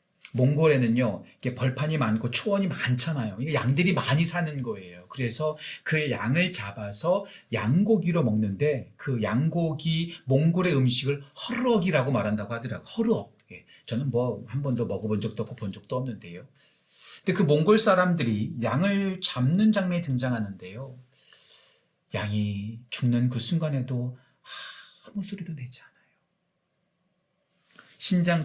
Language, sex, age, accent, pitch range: Korean, male, 40-59, native, 120-180 Hz